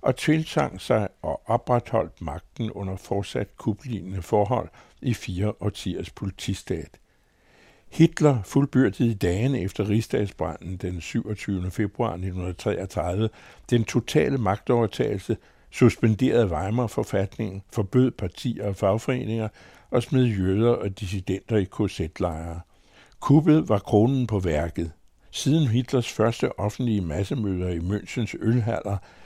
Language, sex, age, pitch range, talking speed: Danish, male, 60-79, 95-120 Hz, 110 wpm